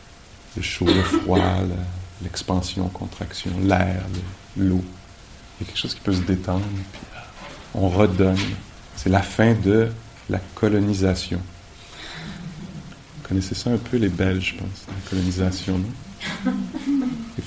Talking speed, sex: 145 wpm, male